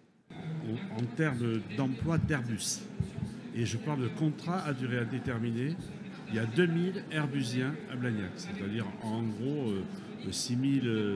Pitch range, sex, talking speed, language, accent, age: 115-160 Hz, male, 125 wpm, French, French, 60-79